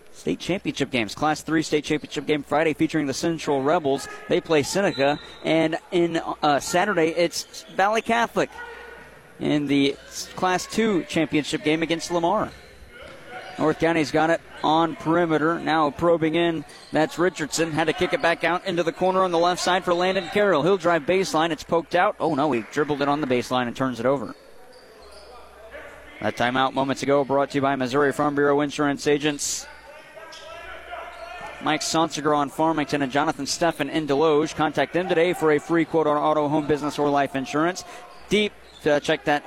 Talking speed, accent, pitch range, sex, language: 180 wpm, American, 150-180 Hz, male, English